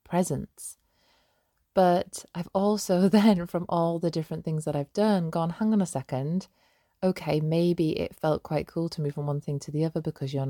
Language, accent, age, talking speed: English, British, 20-39, 195 wpm